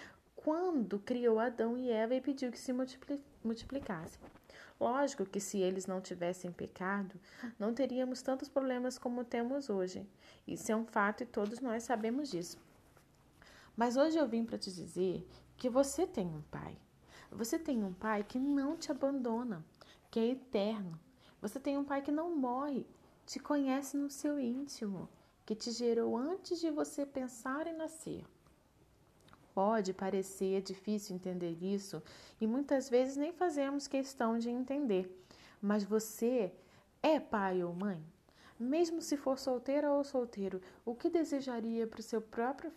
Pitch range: 200-270 Hz